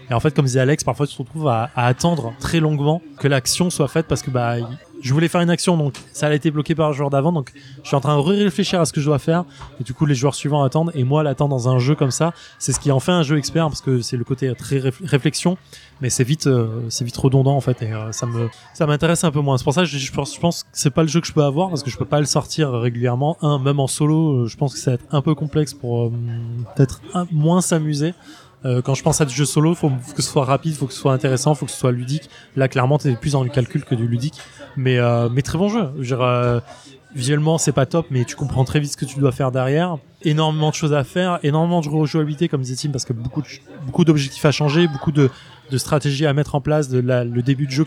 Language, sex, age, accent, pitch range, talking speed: French, male, 20-39, French, 130-155 Hz, 285 wpm